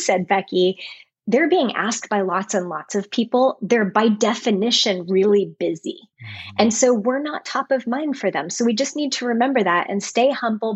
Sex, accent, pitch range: female, American, 195-245 Hz